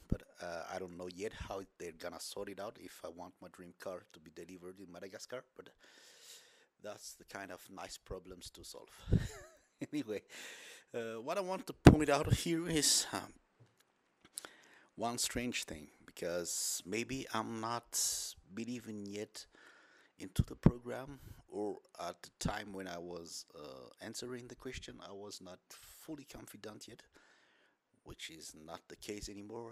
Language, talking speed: English, 160 wpm